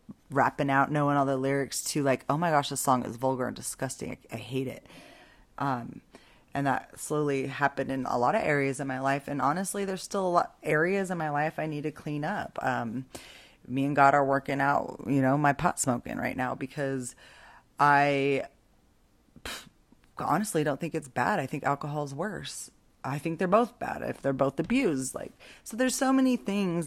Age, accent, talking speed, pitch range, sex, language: 20-39, American, 200 wpm, 140-180 Hz, female, English